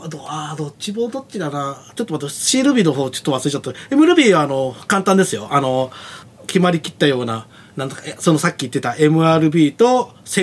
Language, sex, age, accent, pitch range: Japanese, male, 30-49, native, 125-200 Hz